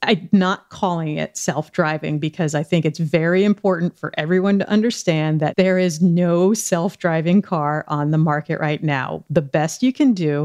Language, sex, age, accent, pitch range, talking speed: English, female, 40-59, American, 155-195 Hz, 180 wpm